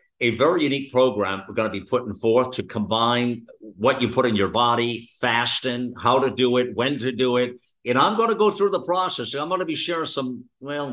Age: 50-69